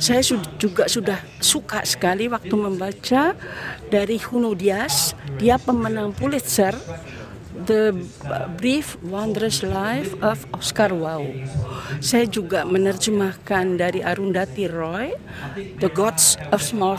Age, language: 50-69, Indonesian